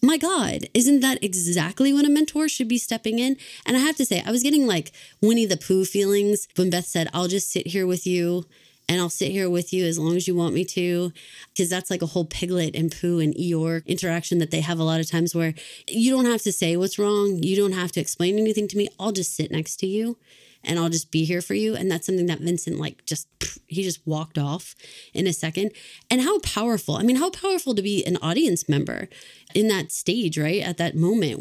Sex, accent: female, American